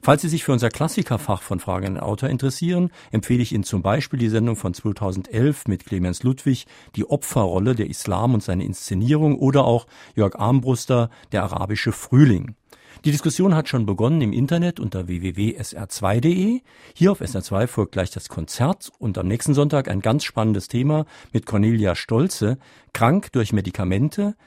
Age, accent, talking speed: 50-69, German, 165 wpm